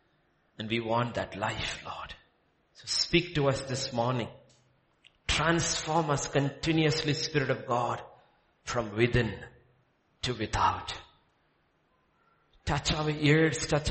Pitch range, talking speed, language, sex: 110-155 Hz, 110 wpm, English, male